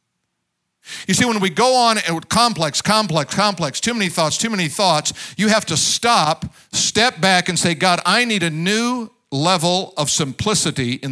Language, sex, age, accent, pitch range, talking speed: English, male, 50-69, American, 155-200 Hz, 175 wpm